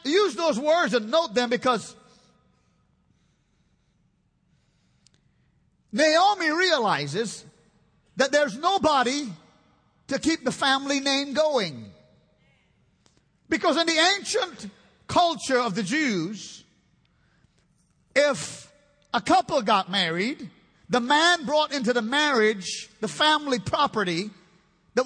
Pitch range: 215-295 Hz